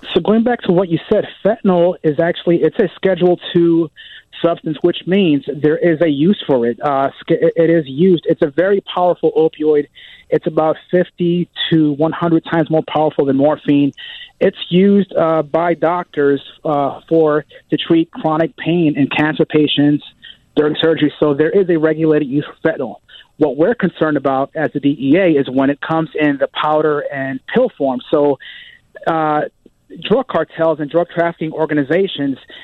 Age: 30-49